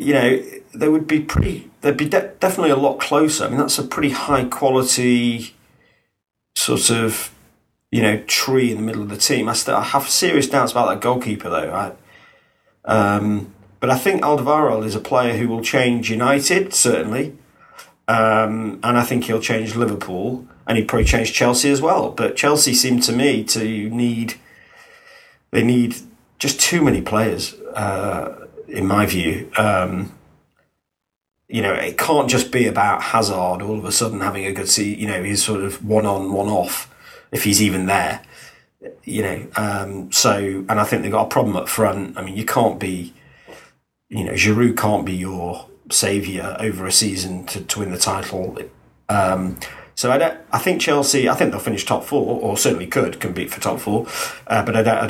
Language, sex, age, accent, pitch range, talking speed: English, male, 40-59, British, 100-125 Hz, 185 wpm